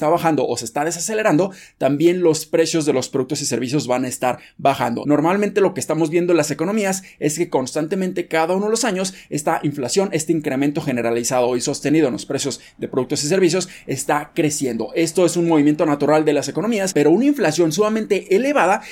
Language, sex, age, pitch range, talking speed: Spanish, male, 20-39, 145-190 Hz, 200 wpm